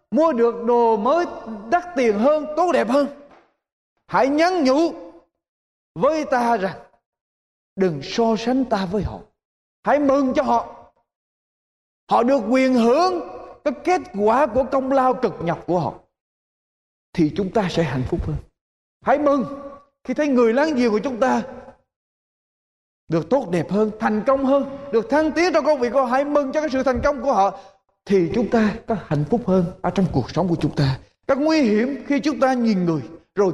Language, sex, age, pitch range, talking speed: Vietnamese, male, 20-39, 195-285 Hz, 185 wpm